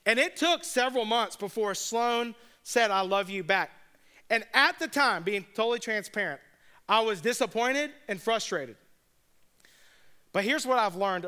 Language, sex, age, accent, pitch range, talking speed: English, male, 40-59, American, 195-245 Hz, 155 wpm